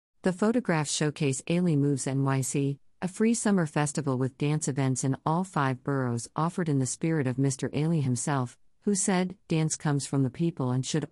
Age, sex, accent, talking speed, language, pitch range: 50-69, female, American, 185 wpm, English, 135-160 Hz